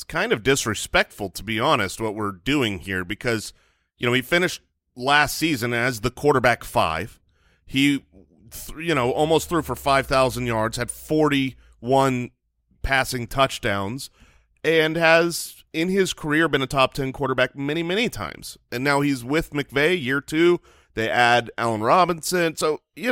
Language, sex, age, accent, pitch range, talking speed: English, male, 30-49, American, 120-155 Hz, 155 wpm